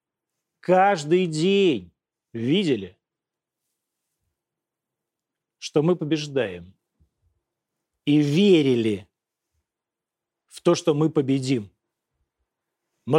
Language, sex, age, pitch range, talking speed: Russian, male, 40-59, 130-175 Hz, 65 wpm